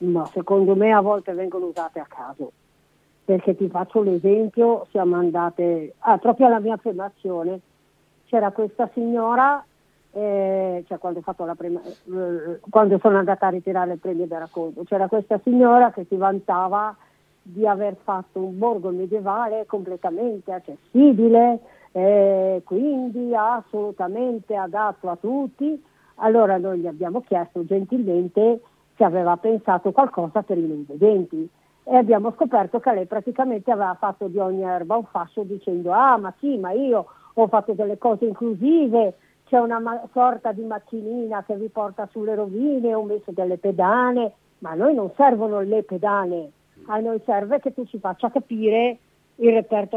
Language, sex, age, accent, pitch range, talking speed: Italian, female, 40-59, native, 190-235 Hz, 155 wpm